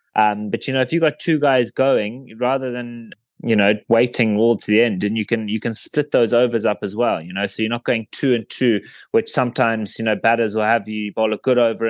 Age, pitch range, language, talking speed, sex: 20-39, 105-120 Hz, English, 255 wpm, male